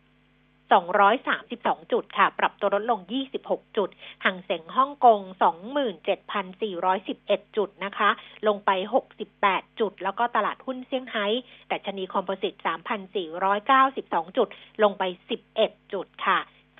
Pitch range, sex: 195-255 Hz, female